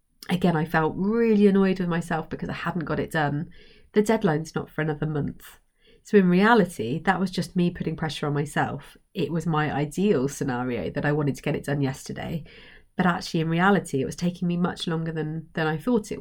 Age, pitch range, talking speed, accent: 30-49, 155-185 Hz, 215 wpm, British